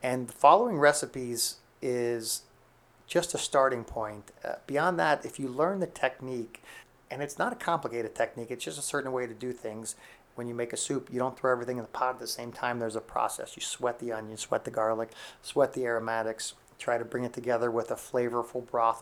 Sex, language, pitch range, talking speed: male, English, 115-130 Hz, 220 wpm